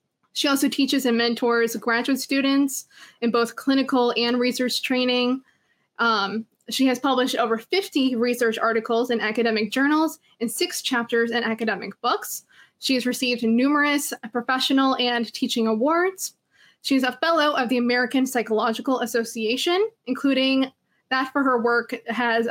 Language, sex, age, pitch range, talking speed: English, female, 20-39, 235-275 Hz, 140 wpm